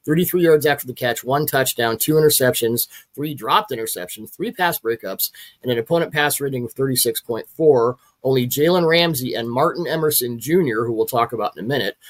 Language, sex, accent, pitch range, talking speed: English, male, American, 125-160 Hz, 180 wpm